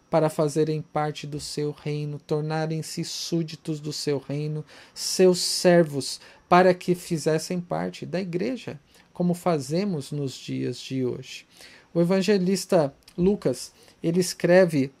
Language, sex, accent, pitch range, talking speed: Portuguese, male, Brazilian, 145-185 Hz, 115 wpm